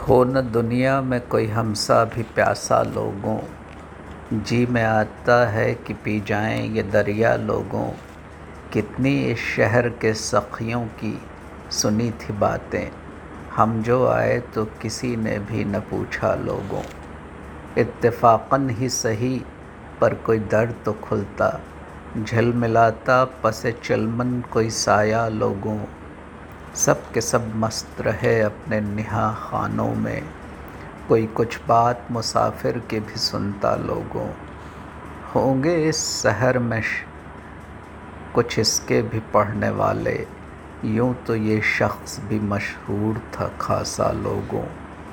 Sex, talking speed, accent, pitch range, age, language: male, 115 wpm, native, 90-115 Hz, 50-69, Hindi